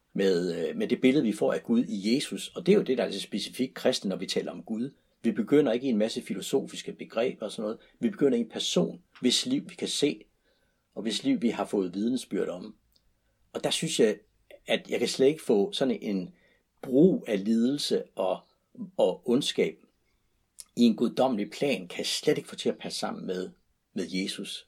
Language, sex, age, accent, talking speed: Danish, male, 60-79, native, 215 wpm